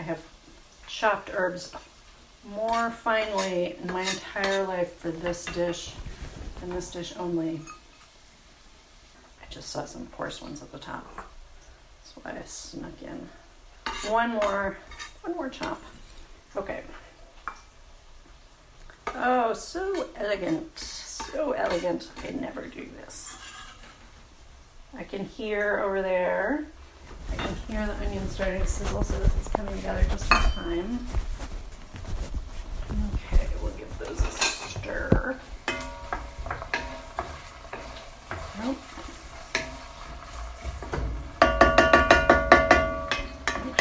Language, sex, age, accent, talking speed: English, female, 40-59, American, 100 wpm